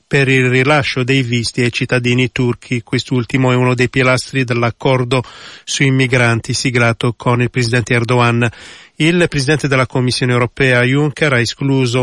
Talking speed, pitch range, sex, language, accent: 145 wpm, 125-140 Hz, male, Italian, native